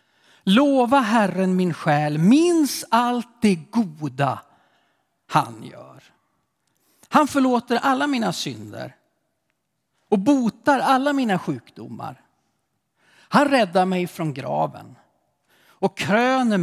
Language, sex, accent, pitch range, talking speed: Swedish, male, native, 160-250 Hz, 95 wpm